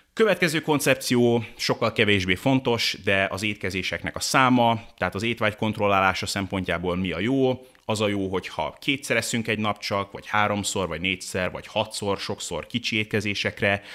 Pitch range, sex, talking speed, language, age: 95-115 Hz, male, 155 wpm, Hungarian, 30-49